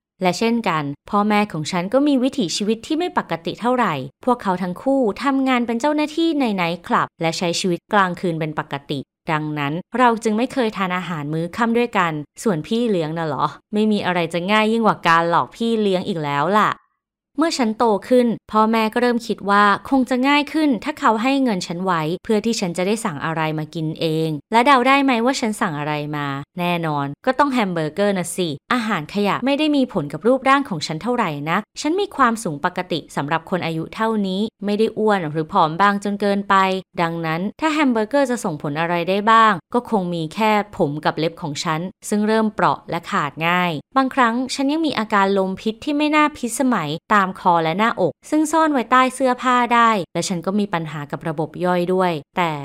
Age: 20-39